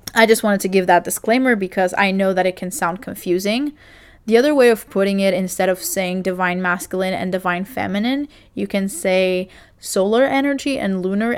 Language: English